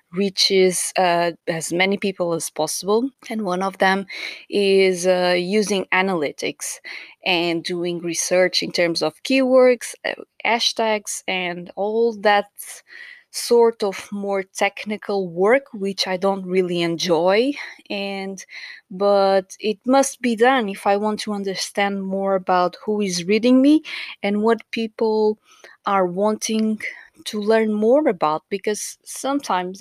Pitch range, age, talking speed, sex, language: 185-225 Hz, 20-39, 130 wpm, female, English